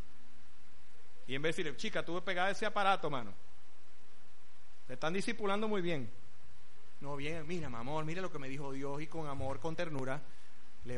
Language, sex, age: Spanish, male, 30-49